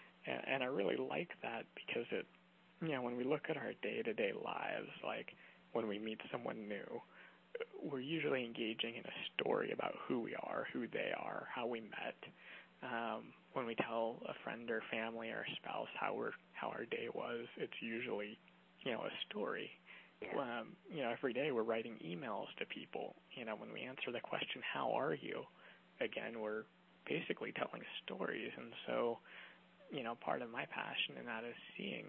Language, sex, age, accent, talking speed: English, male, 20-39, American, 180 wpm